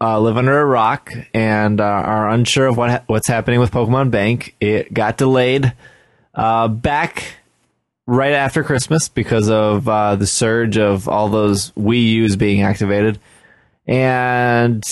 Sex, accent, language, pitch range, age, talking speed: male, American, English, 110-130 Hz, 20-39, 155 wpm